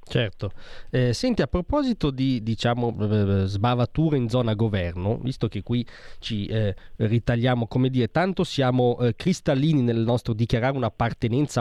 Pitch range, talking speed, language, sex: 110-135 Hz, 140 wpm, Italian, male